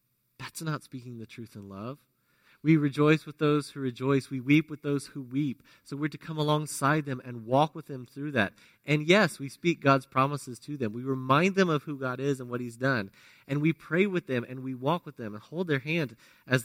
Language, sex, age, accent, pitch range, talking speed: English, male, 30-49, American, 125-170 Hz, 235 wpm